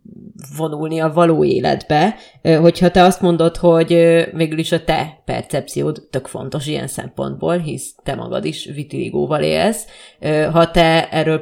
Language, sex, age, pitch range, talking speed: Hungarian, female, 30-49, 160-180 Hz, 140 wpm